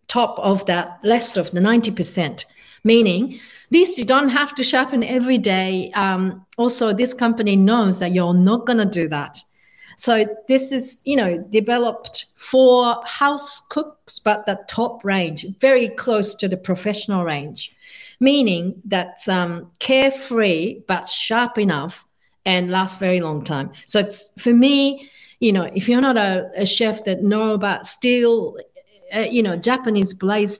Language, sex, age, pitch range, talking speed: English, female, 50-69, 180-245 Hz, 155 wpm